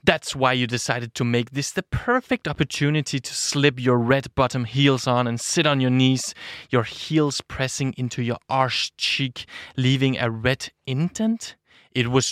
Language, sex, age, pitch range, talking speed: Danish, male, 20-39, 120-140 Hz, 170 wpm